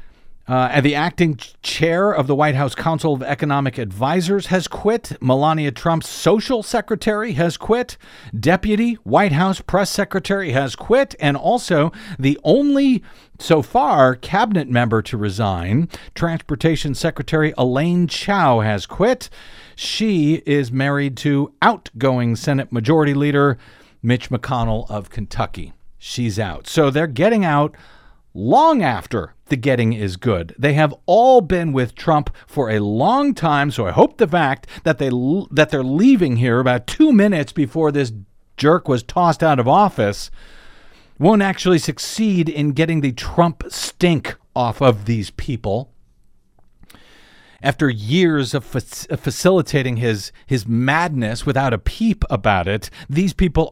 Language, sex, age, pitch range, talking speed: English, male, 50-69, 125-170 Hz, 140 wpm